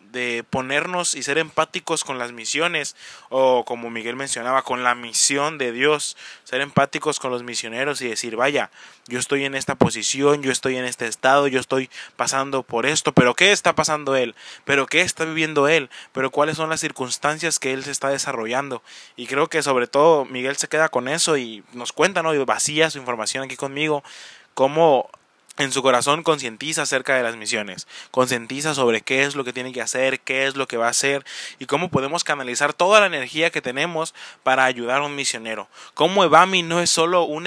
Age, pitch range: 20-39, 125-155 Hz